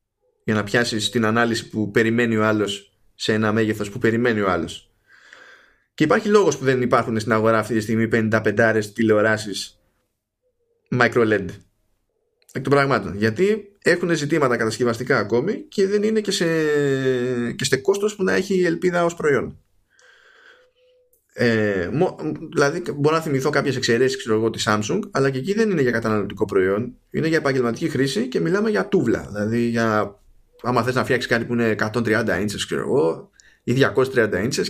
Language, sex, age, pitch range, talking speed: Greek, male, 20-39, 110-155 Hz, 165 wpm